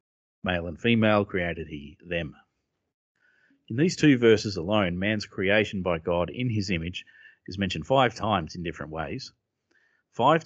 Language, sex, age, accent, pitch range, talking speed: English, male, 30-49, Australian, 90-125 Hz, 150 wpm